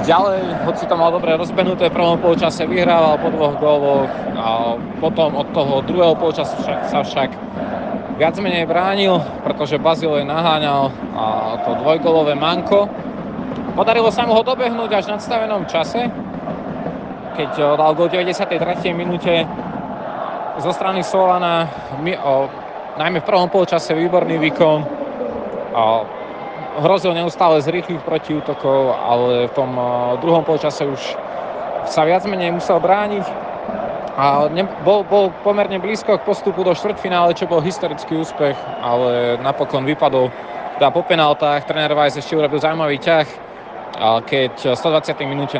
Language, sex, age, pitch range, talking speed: Slovak, male, 20-39, 140-180 Hz, 130 wpm